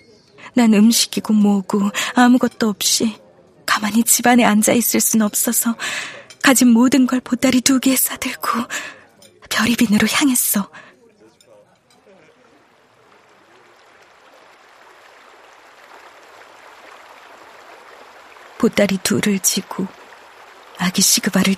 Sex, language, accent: female, Korean, native